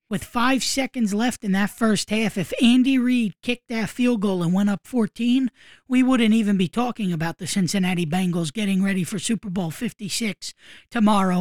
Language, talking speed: English, 185 wpm